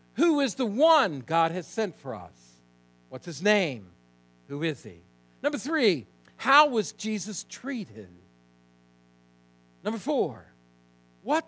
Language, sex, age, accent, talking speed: English, male, 60-79, American, 125 wpm